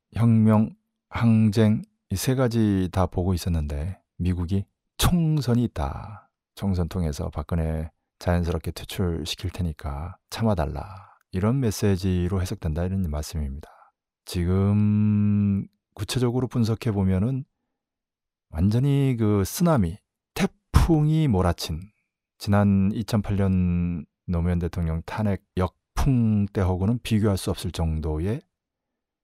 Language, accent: Korean, native